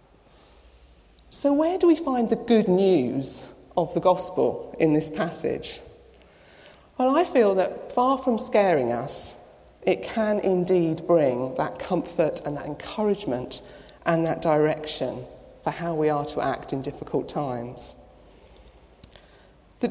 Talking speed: 135 wpm